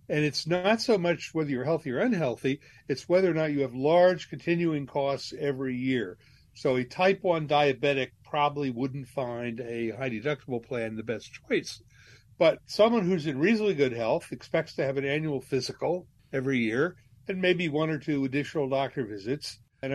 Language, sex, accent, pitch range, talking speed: English, male, American, 130-165 Hz, 175 wpm